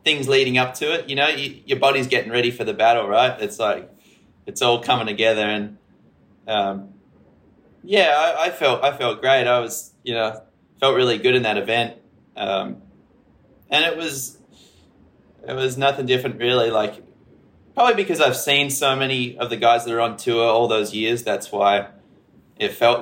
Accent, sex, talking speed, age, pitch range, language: Australian, male, 180 wpm, 20-39, 105-130 Hz, English